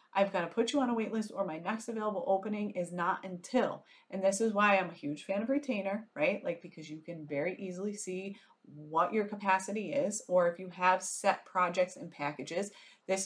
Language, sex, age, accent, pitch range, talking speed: English, female, 30-49, American, 170-215 Hz, 215 wpm